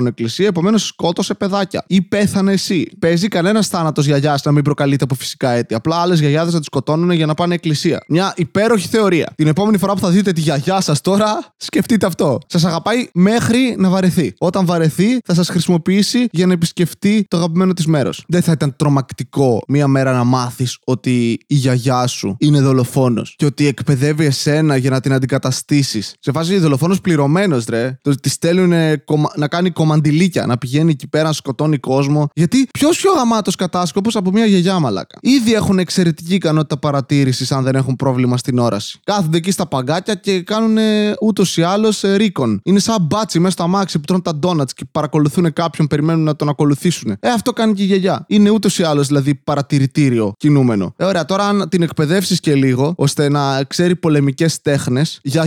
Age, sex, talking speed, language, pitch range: 20-39, male, 190 wpm, Greek, 140-195 Hz